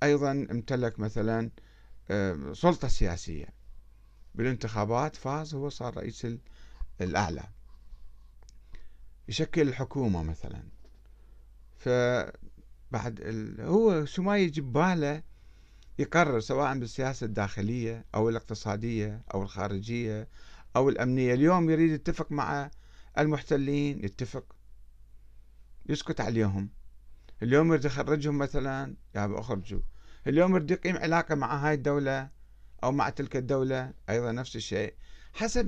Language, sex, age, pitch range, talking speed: Arabic, male, 50-69, 110-155 Hz, 100 wpm